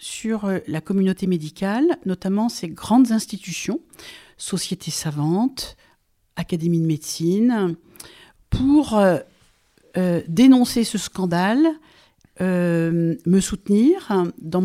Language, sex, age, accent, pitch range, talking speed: French, female, 50-69, French, 175-245 Hz, 90 wpm